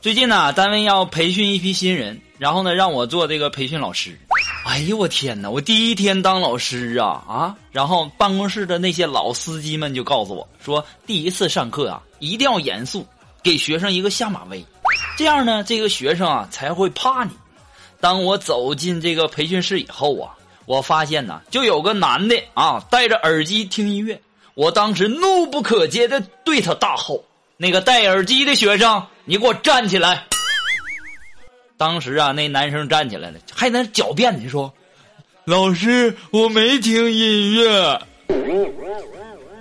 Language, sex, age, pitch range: Chinese, male, 20-39, 165-240 Hz